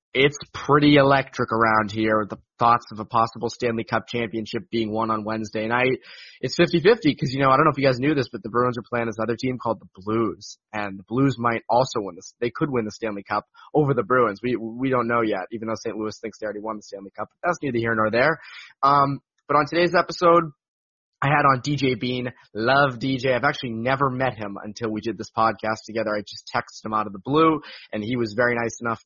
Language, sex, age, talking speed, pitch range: English, male, 20-39, 235 wpm, 110-135 Hz